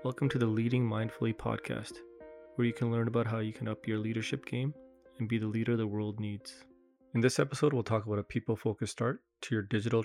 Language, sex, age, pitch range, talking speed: English, male, 20-39, 100-120 Hz, 220 wpm